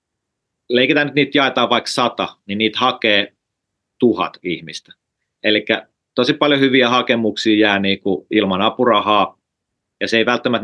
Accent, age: native, 30-49